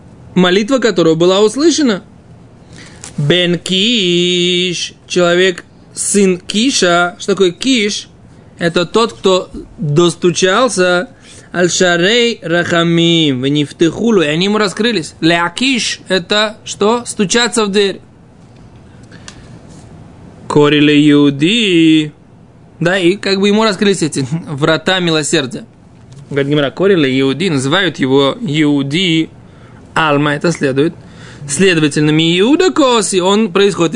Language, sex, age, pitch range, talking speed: Russian, male, 20-39, 160-205 Hz, 100 wpm